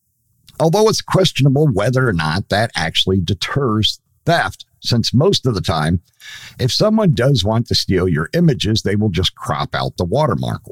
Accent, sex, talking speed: American, male, 170 wpm